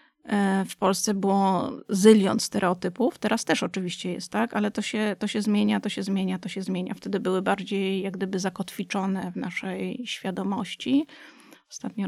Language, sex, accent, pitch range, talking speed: Polish, female, native, 190-230 Hz, 155 wpm